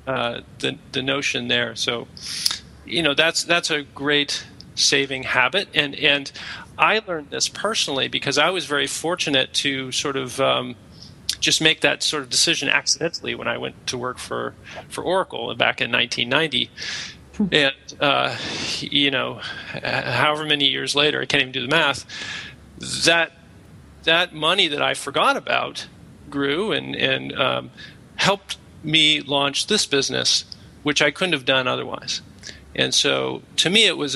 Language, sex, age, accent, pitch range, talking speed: English, male, 40-59, American, 130-155 Hz, 155 wpm